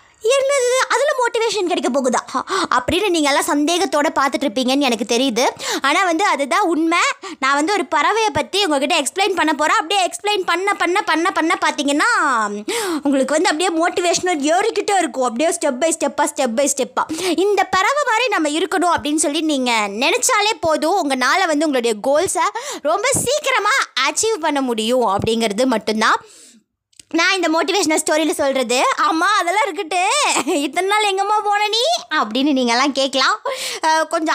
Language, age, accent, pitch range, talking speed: Tamil, 20-39, native, 275-380 Hz, 145 wpm